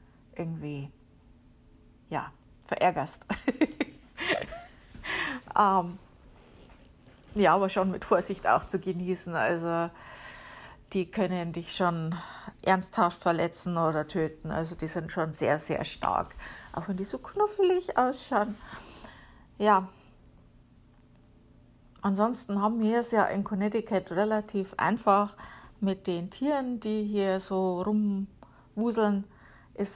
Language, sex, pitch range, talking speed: German, female, 170-210 Hz, 105 wpm